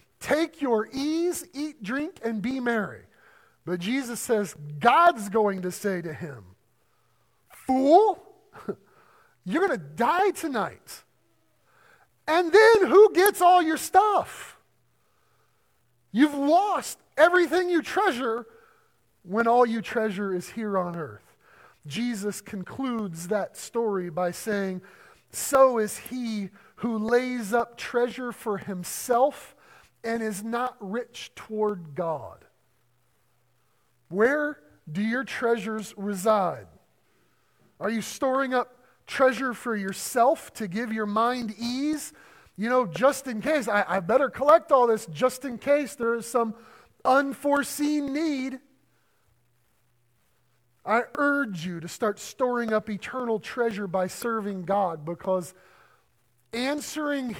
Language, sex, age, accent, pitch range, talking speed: English, male, 40-59, American, 200-275 Hz, 120 wpm